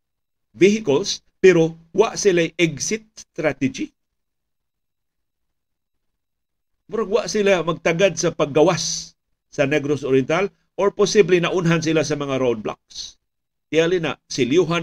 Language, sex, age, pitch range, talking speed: Filipino, male, 50-69, 130-160 Hz, 105 wpm